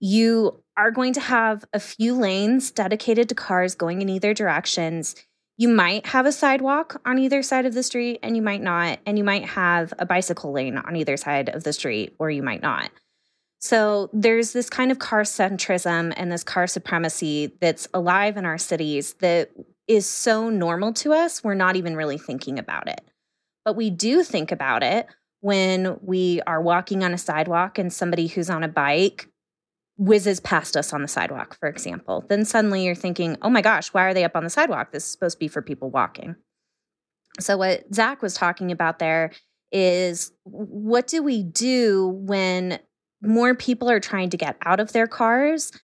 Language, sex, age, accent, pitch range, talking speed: English, female, 20-39, American, 175-225 Hz, 195 wpm